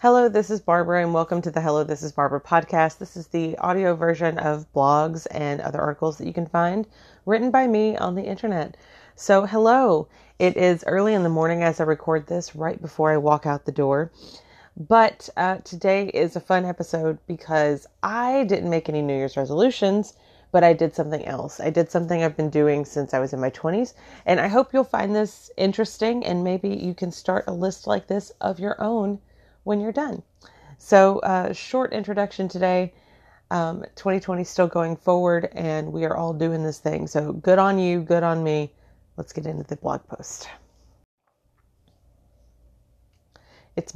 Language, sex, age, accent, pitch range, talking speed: English, female, 30-49, American, 155-195 Hz, 190 wpm